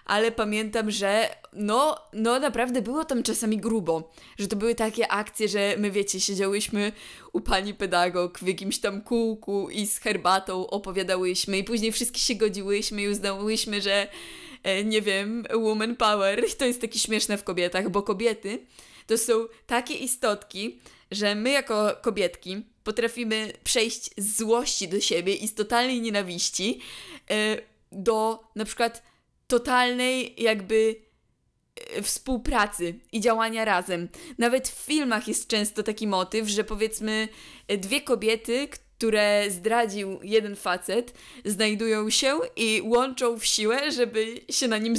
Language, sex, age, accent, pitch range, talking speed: Polish, female, 20-39, native, 205-235 Hz, 135 wpm